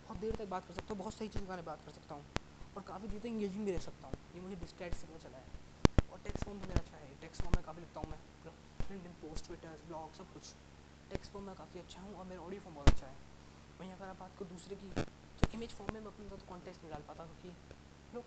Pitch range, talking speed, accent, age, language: 155-200 Hz, 275 wpm, native, 20-39, Hindi